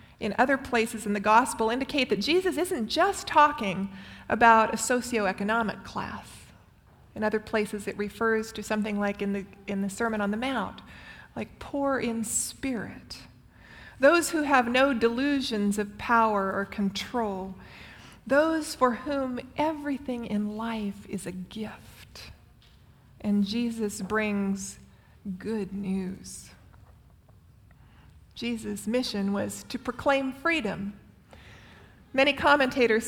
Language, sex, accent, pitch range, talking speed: English, female, American, 210-270 Hz, 120 wpm